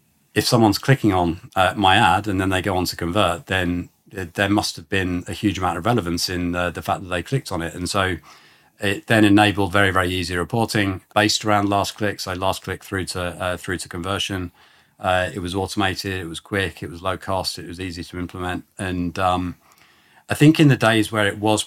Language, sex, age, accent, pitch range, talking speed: English, male, 30-49, British, 90-105 Hz, 230 wpm